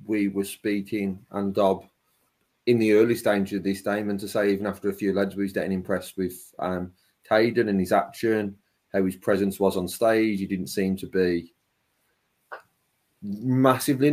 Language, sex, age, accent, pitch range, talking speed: English, male, 30-49, British, 95-115 Hz, 180 wpm